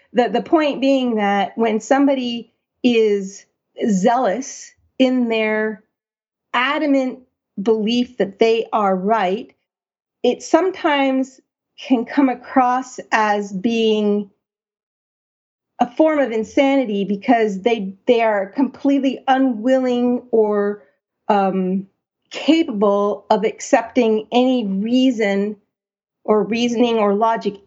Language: English